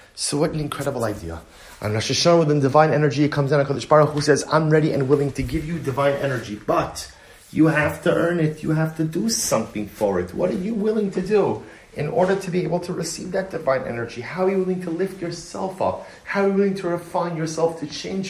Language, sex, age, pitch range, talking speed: English, male, 30-49, 115-160 Hz, 235 wpm